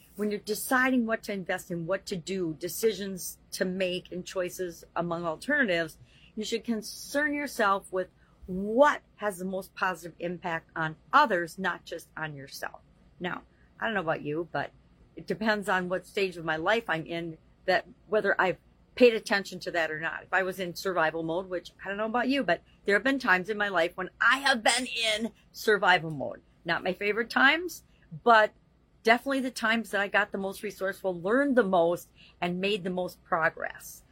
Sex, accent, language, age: female, American, English, 50-69